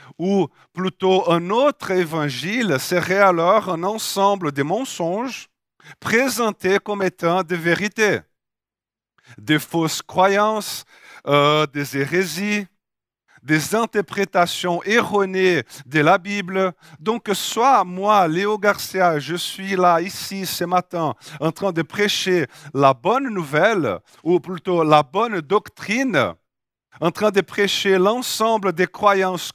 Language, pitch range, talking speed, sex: French, 150-205 Hz, 120 wpm, male